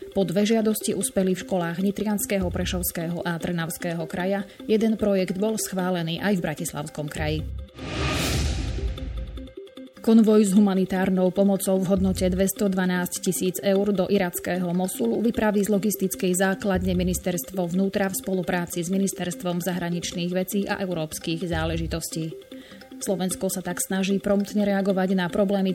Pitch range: 180-205 Hz